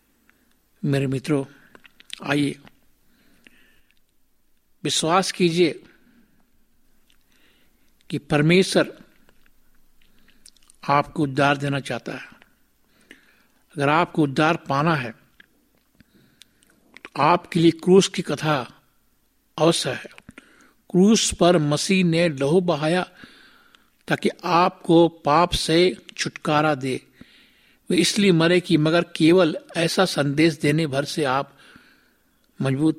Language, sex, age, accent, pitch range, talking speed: Hindi, male, 60-79, native, 145-175 Hz, 90 wpm